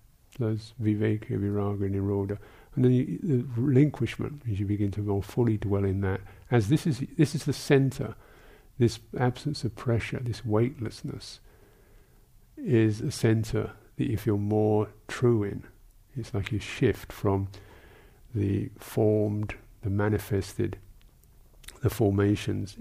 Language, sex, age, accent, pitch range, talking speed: English, male, 50-69, British, 100-120 Hz, 135 wpm